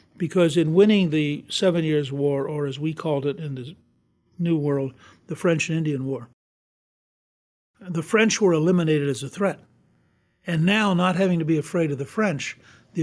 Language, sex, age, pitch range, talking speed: English, male, 60-79, 140-180 Hz, 180 wpm